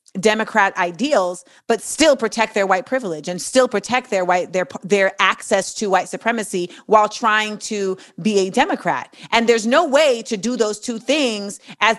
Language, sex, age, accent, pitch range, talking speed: English, female, 30-49, American, 205-265 Hz, 175 wpm